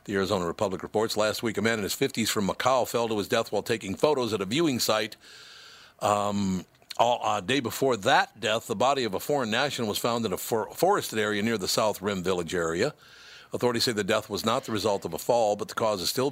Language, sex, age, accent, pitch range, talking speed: English, male, 60-79, American, 105-130 Hz, 245 wpm